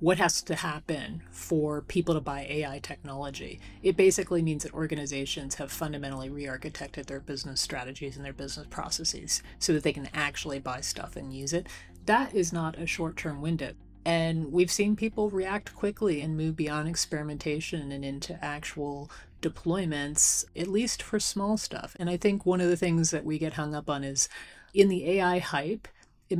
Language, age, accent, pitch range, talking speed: English, 30-49, American, 145-175 Hz, 180 wpm